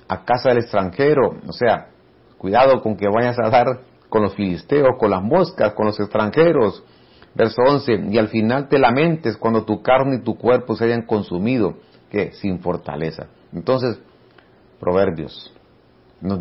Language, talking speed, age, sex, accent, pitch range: Spanish, 155 wpm, 50-69, male, Mexican, 95-120 Hz